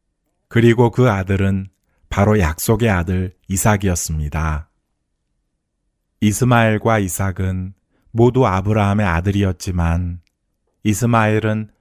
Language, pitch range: Korean, 90-110 Hz